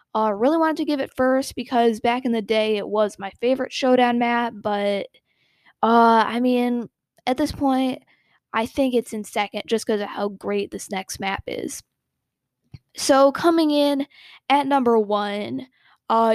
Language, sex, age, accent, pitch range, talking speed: English, female, 10-29, American, 215-265 Hz, 170 wpm